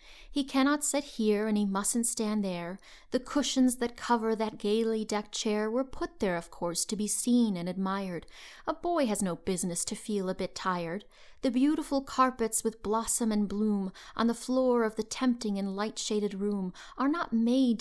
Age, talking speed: 30-49, 190 wpm